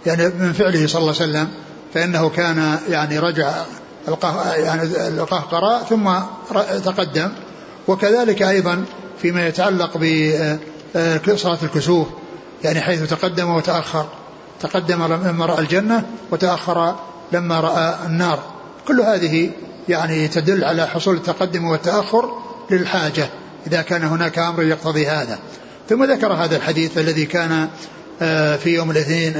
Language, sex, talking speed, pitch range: Arabic, male, 115 wpm, 160-180 Hz